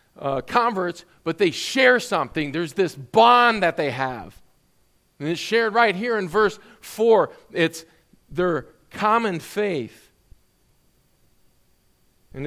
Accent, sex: American, male